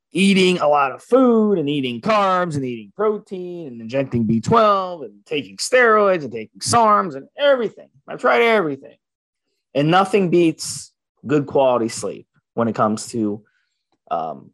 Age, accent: 30-49, American